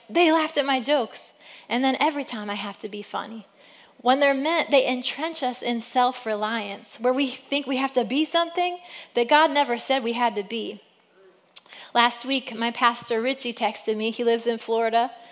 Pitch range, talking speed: 235-330 Hz, 190 wpm